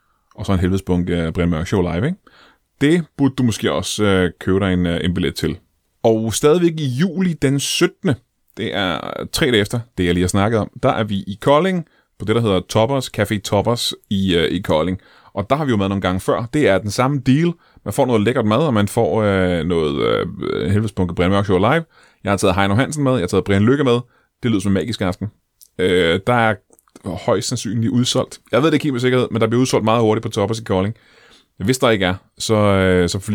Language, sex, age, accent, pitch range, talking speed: Danish, male, 30-49, native, 95-125 Hz, 235 wpm